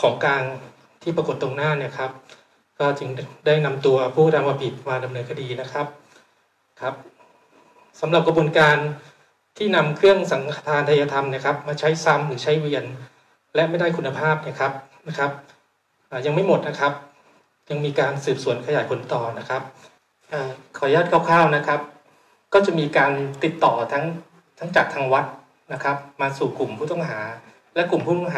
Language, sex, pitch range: Thai, male, 140-165 Hz